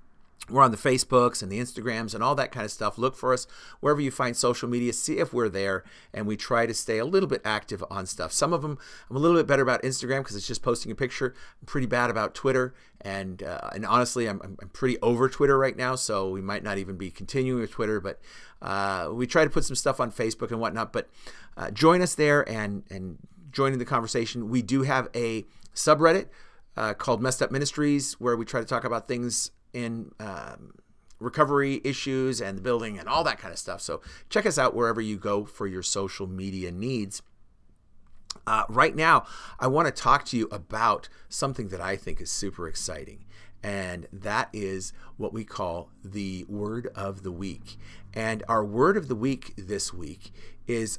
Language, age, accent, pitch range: English, 40-59, American, 105-130 Hz